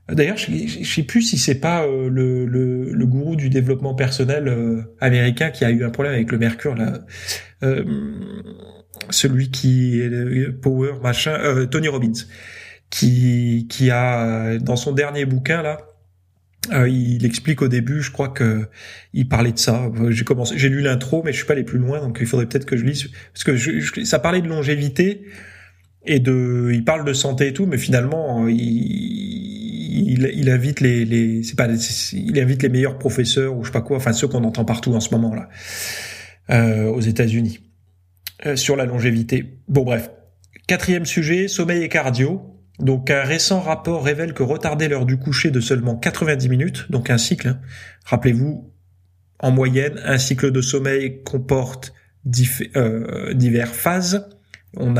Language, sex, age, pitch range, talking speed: French, male, 30-49, 115-145 Hz, 180 wpm